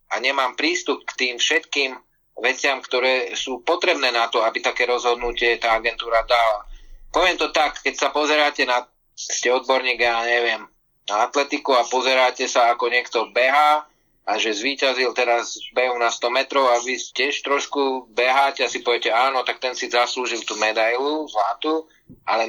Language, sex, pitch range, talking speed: Slovak, male, 120-150 Hz, 165 wpm